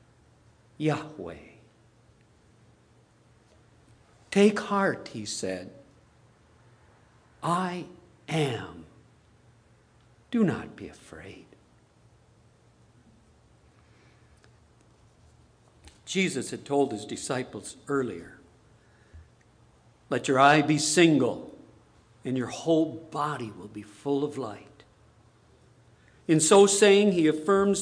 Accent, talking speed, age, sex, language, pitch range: American, 80 wpm, 60-79, male, English, 115-165 Hz